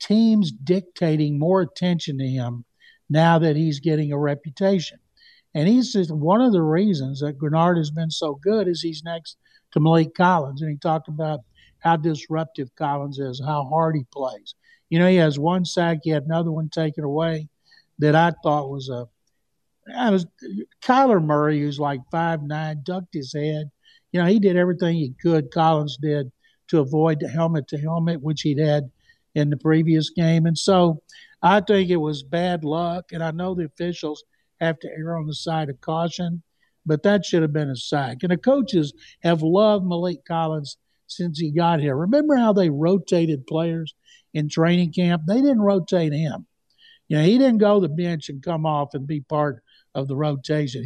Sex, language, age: male, English, 60-79